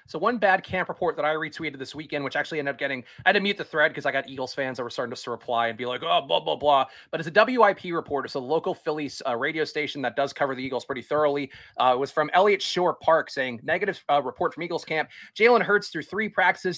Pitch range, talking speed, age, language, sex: 145-185 Hz, 275 wpm, 30-49, English, male